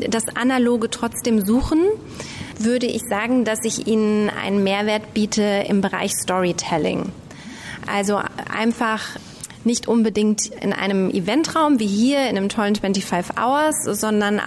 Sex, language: female, German